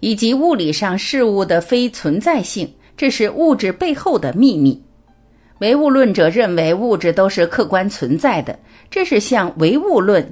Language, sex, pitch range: Chinese, female, 165-260 Hz